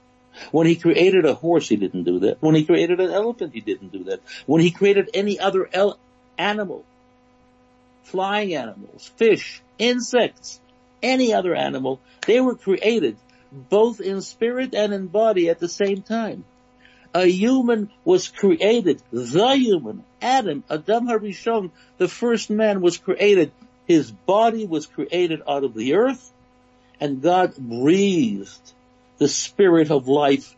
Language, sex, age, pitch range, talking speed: English, male, 60-79, 125-205 Hz, 145 wpm